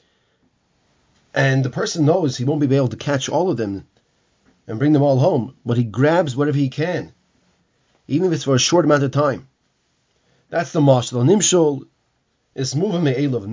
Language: English